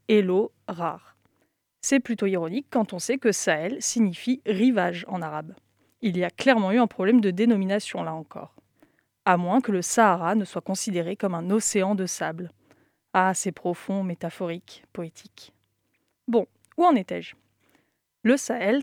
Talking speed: 160 wpm